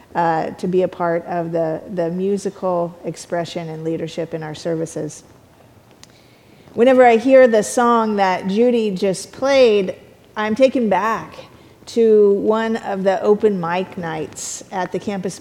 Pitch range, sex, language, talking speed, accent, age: 180-230 Hz, female, English, 145 wpm, American, 40-59